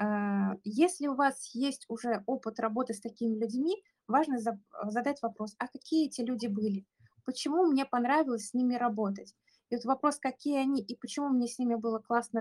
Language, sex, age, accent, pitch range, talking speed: Russian, female, 20-39, native, 220-265 Hz, 175 wpm